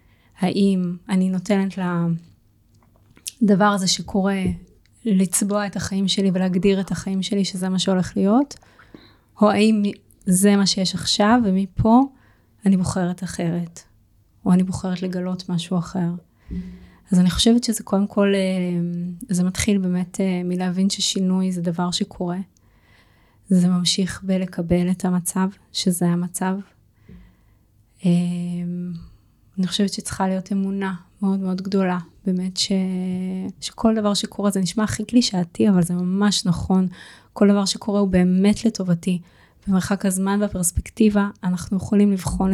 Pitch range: 180-200 Hz